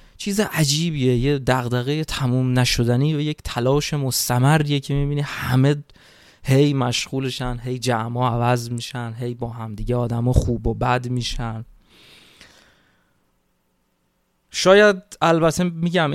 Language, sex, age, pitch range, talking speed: Persian, male, 20-39, 120-145 Hz, 120 wpm